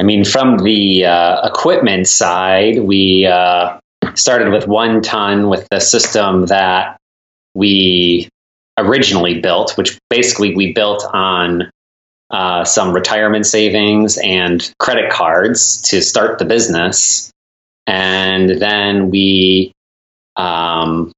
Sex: male